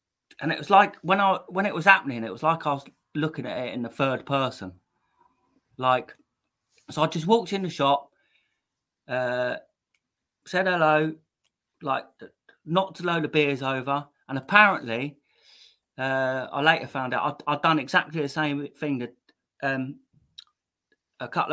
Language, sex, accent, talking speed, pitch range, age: English, male, British, 160 wpm, 130-160 Hz, 30-49